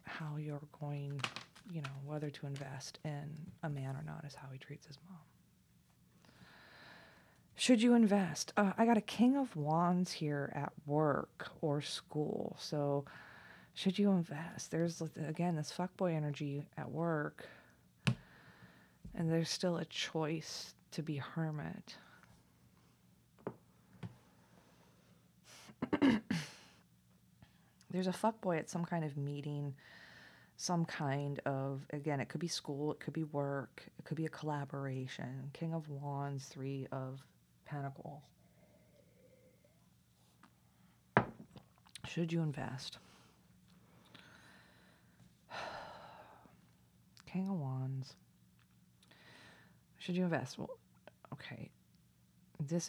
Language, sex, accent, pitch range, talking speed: English, female, American, 130-165 Hz, 110 wpm